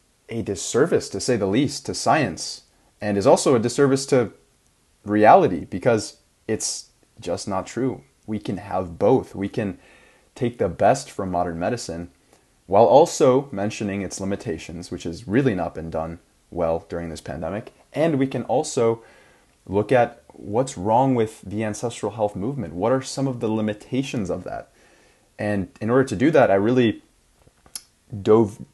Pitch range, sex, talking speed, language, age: 90-115 Hz, male, 160 wpm, English, 20-39